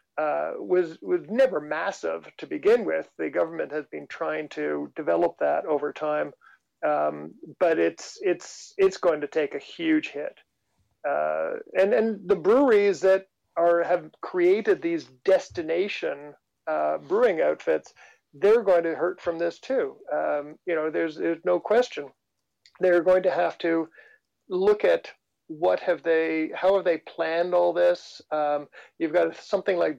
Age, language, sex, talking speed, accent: 50-69, English, male, 155 wpm, American